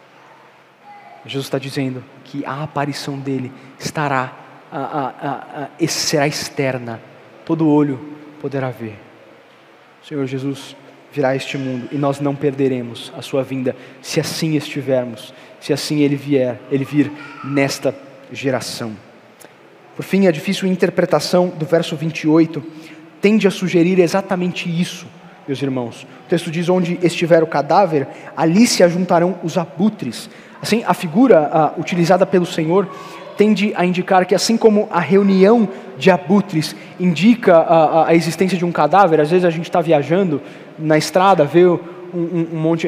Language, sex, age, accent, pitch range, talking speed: Portuguese, male, 20-39, Brazilian, 145-180 Hz, 150 wpm